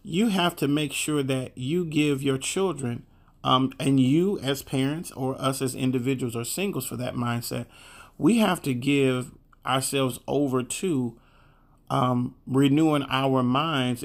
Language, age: English, 40-59